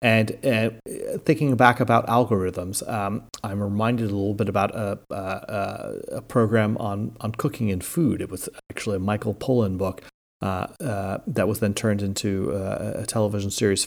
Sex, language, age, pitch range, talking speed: male, English, 30-49, 105-130 Hz, 170 wpm